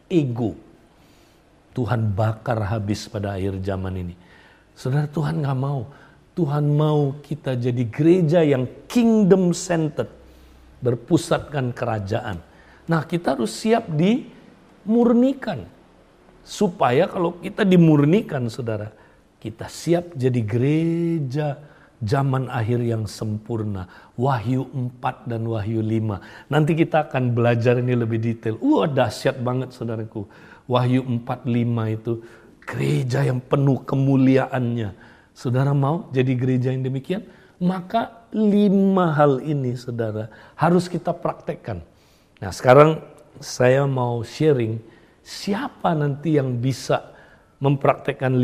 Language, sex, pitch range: Indonesian, male, 115-155 Hz